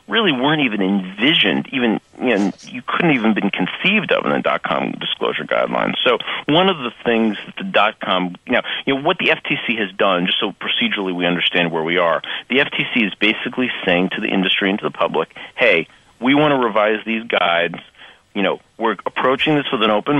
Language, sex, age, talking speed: English, male, 40-59, 215 wpm